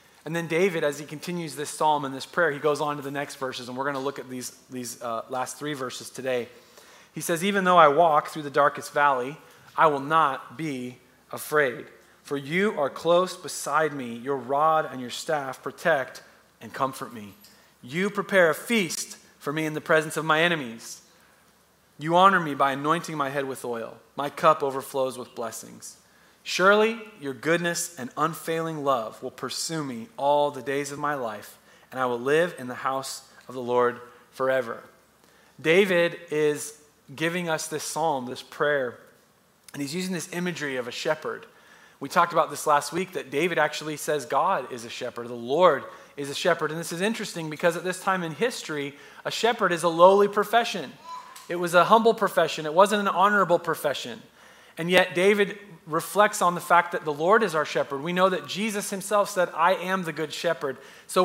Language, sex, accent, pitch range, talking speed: English, male, American, 140-185 Hz, 195 wpm